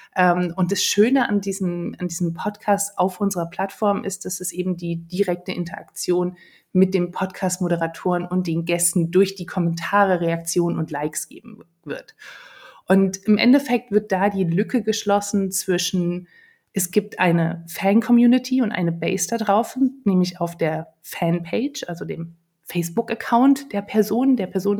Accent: German